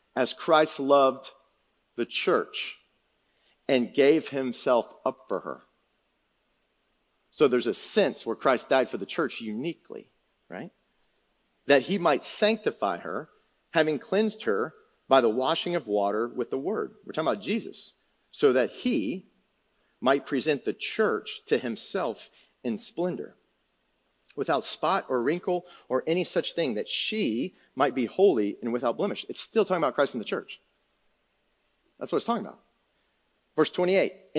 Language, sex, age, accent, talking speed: English, male, 40-59, American, 150 wpm